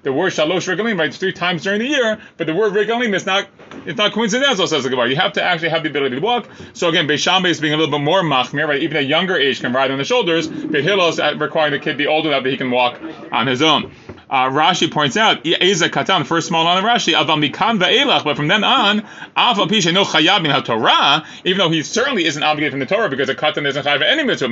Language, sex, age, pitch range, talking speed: English, male, 30-49, 150-200 Hz, 240 wpm